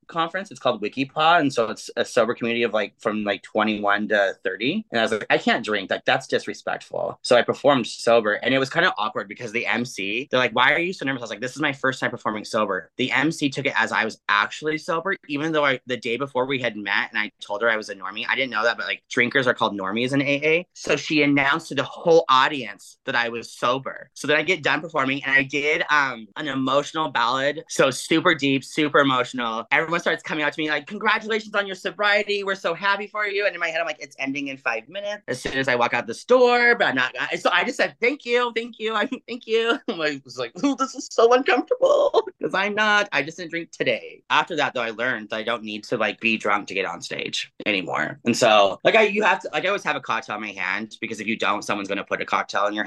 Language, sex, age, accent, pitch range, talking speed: English, male, 30-49, American, 115-185 Hz, 265 wpm